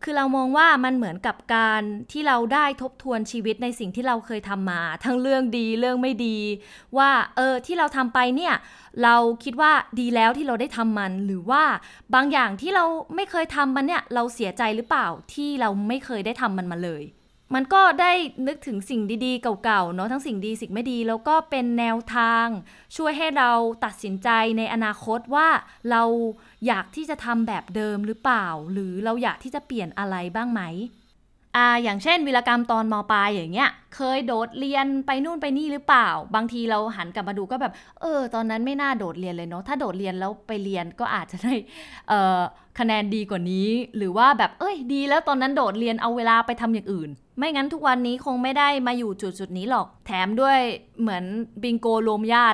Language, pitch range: Thai, 215-265 Hz